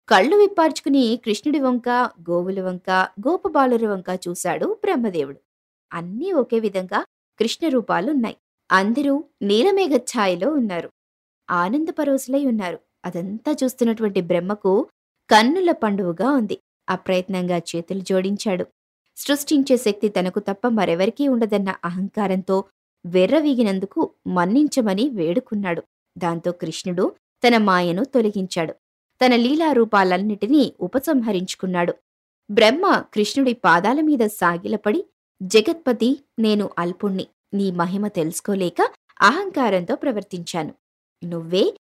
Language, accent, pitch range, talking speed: Telugu, native, 185-265 Hz, 85 wpm